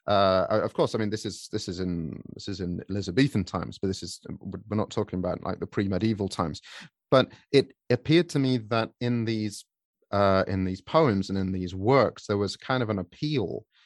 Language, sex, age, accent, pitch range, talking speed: English, male, 30-49, British, 95-115 Hz, 210 wpm